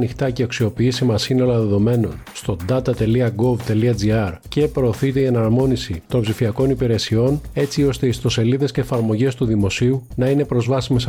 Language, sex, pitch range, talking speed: Greek, male, 115-135 Hz, 145 wpm